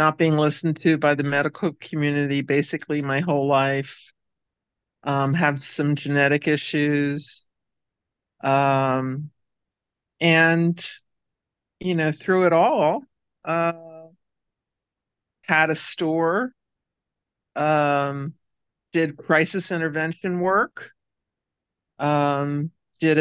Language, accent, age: English, American, 50-69